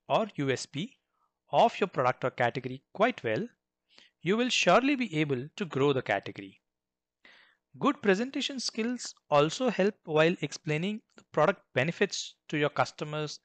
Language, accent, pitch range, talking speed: English, Indian, 130-200 Hz, 140 wpm